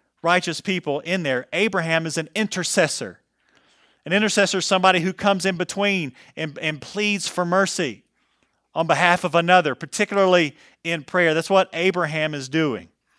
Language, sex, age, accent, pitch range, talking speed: English, male, 40-59, American, 140-185 Hz, 150 wpm